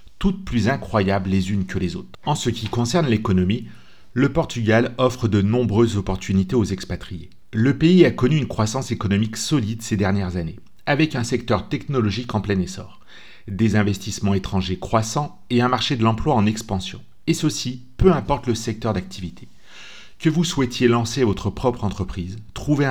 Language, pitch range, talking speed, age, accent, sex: French, 95-125 Hz, 170 wpm, 40-59, French, male